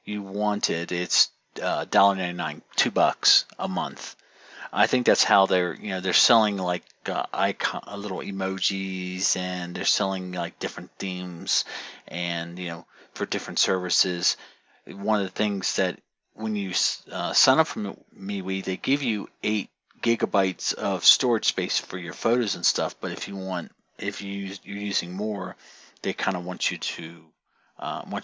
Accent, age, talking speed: American, 40-59, 165 wpm